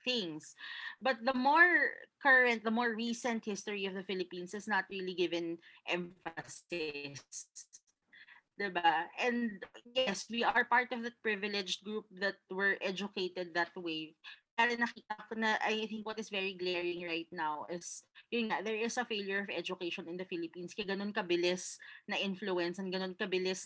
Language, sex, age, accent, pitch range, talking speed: Filipino, female, 20-39, native, 180-240 Hz, 145 wpm